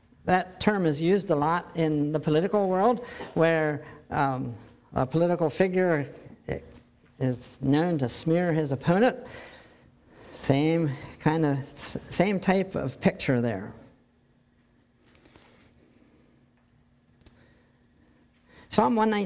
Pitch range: 150-210 Hz